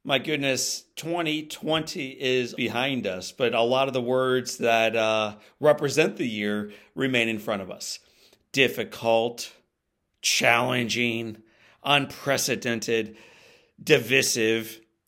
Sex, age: male, 40-59